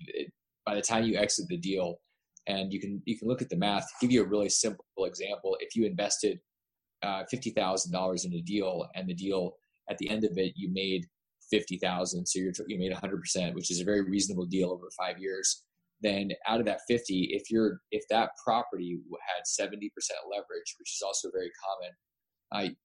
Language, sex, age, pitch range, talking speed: English, male, 20-39, 90-105 Hz, 195 wpm